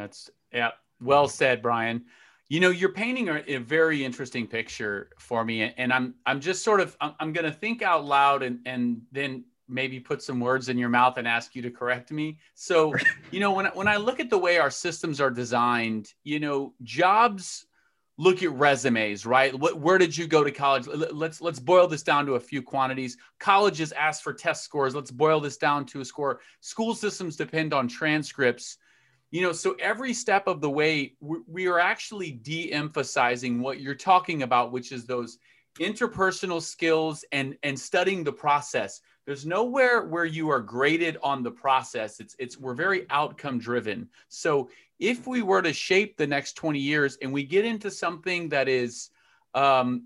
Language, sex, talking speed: English, male, 190 wpm